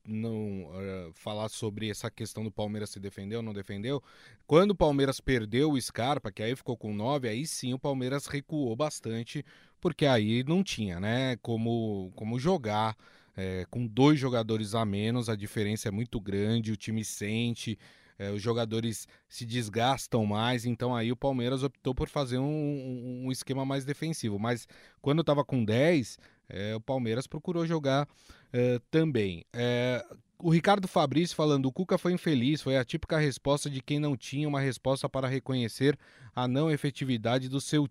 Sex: male